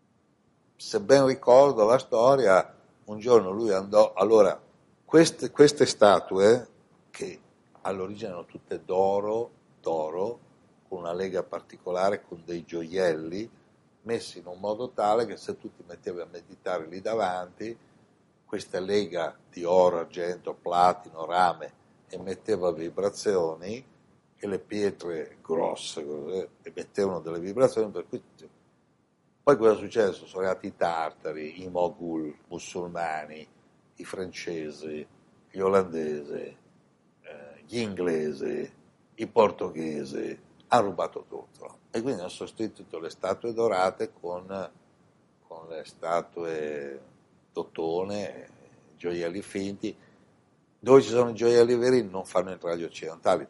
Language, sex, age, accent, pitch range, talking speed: Italian, male, 60-79, native, 85-120 Hz, 120 wpm